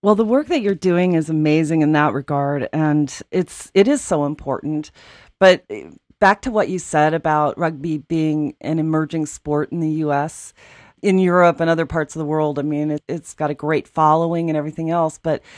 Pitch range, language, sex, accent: 155-185 Hz, English, female, American